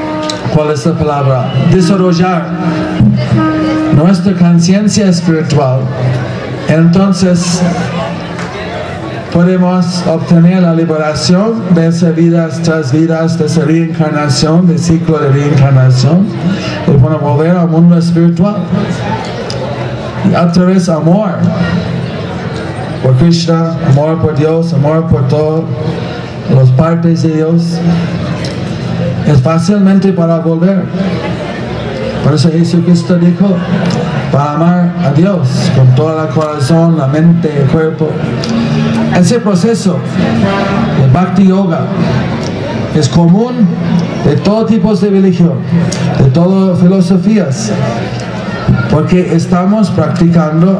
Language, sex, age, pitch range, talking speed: English, male, 50-69, 155-180 Hz, 100 wpm